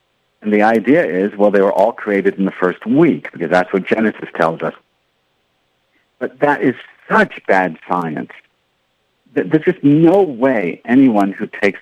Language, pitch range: English, 95-135 Hz